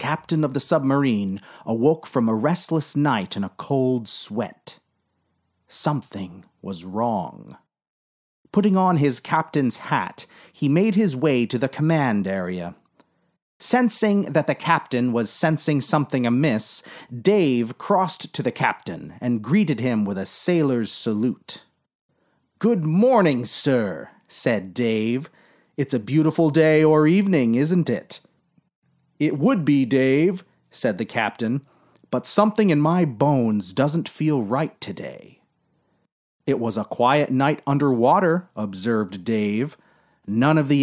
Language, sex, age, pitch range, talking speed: English, male, 30-49, 115-165 Hz, 130 wpm